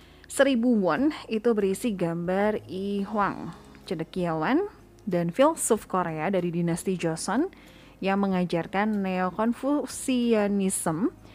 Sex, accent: female, native